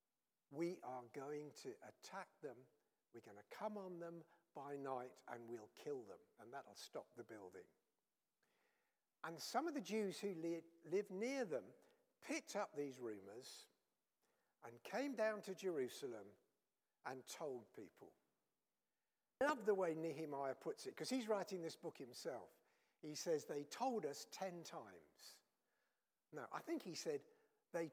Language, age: English, 60-79